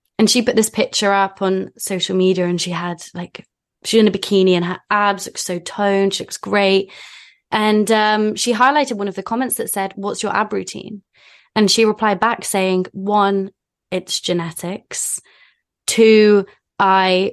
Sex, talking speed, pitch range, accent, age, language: female, 175 wpm, 185-210 Hz, British, 20-39, English